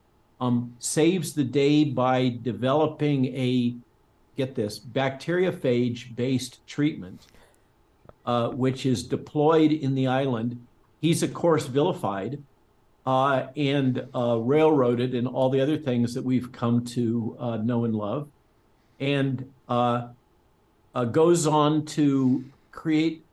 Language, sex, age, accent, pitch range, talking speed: English, male, 50-69, American, 120-140 Hz, 120 wpm